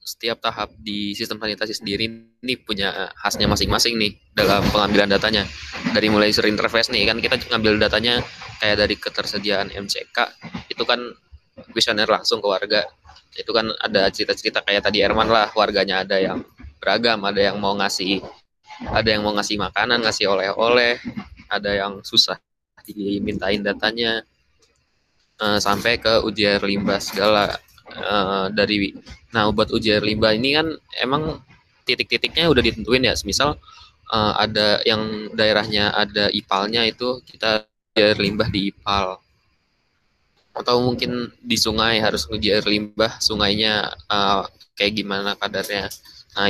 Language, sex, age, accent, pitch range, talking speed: Indonesian, male, 20-39, native, 100-110 Hz, 135 wpm